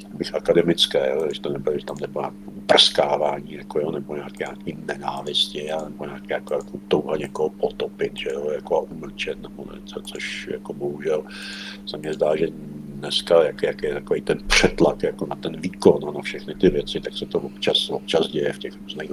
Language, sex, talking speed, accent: Czech, male, 185 wpm, native